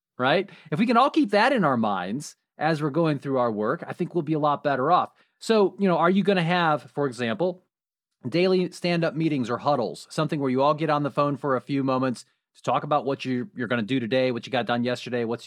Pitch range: 135-205 Hz